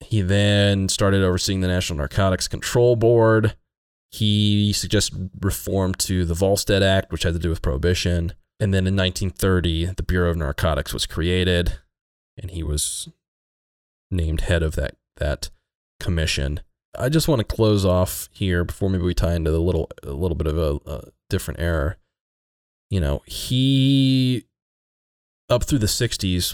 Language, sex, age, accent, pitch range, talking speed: English, male, 20-39, American, 80-95 Hz, 160 wpm